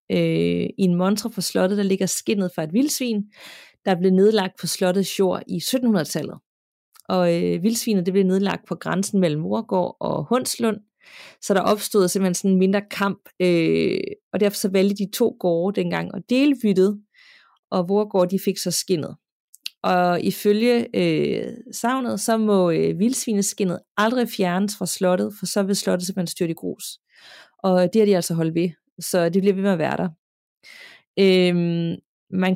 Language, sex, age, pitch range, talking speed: Danish, female, 30-49, 180-215 Hz, 170 wpm